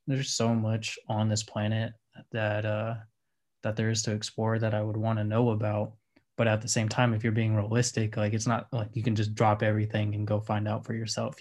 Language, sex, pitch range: English, male, 110-120 Hz